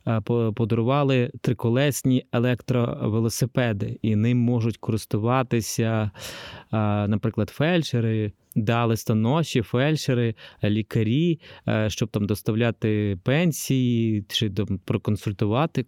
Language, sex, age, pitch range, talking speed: Ukrainian, male, 20-39, 105-120 Hz, 70 wpm